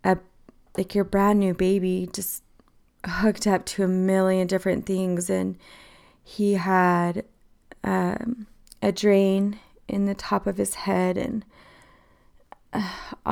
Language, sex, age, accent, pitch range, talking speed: English, female, 20-39, American, 185-205 Hz, 120 wpm